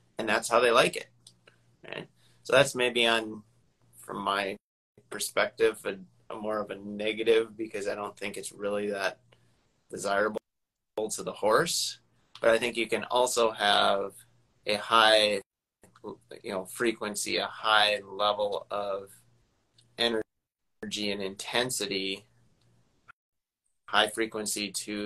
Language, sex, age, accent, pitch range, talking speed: English, male, 20-39, American, 100-120 Hz, 125 wpm